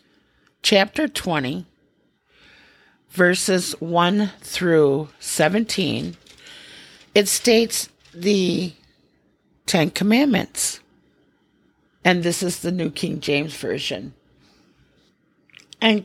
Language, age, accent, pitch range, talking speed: English, 50-69, American, 150-200 Hz, 75 wpm